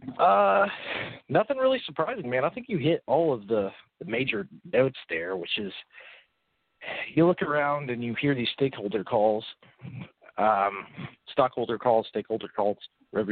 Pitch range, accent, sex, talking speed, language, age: 115-150 Hz, American, male, 150 wpm, English, 40-59